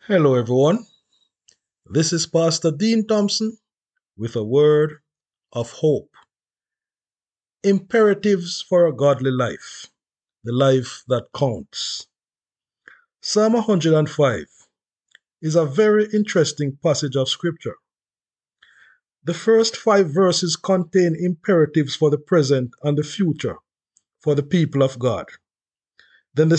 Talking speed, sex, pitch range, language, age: 110 wpm, male, 140-200 Hz, English, 50-69